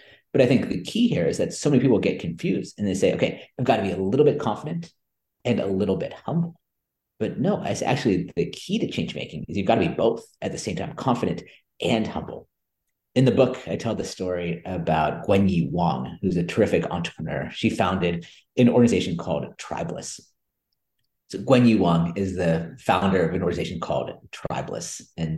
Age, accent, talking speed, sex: 40-59, American, 205 wpm, male